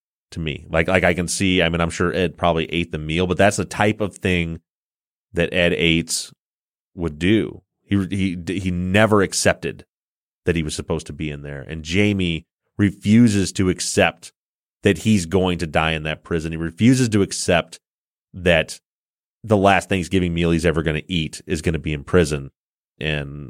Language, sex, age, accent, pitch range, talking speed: English, male, 30-49, American, 80-100 Hz, 185 wpm